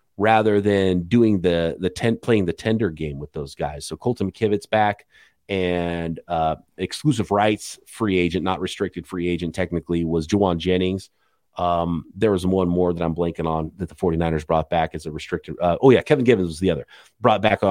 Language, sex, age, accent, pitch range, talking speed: English, male, 30-49, American, 90-130 Hz, 195 wpm